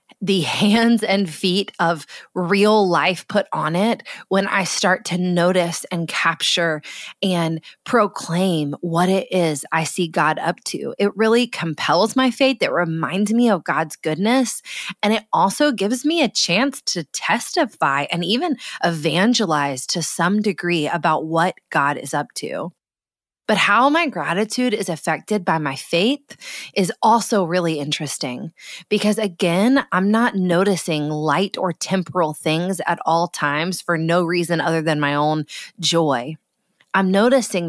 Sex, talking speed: female, 150 wpm